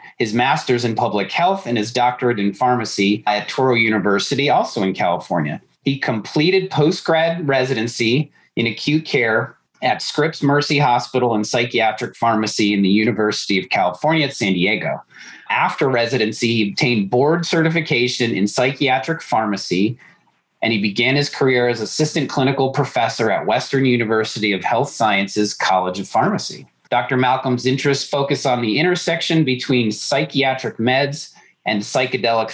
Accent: American